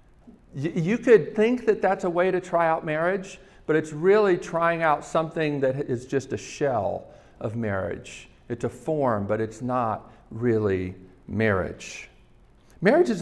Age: 50-69